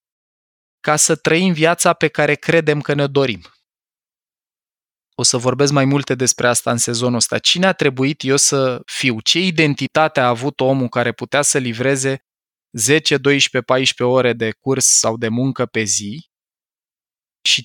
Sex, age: male, 20-39